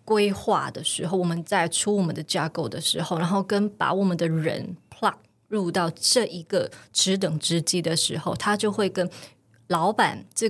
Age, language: 20-39, Chinese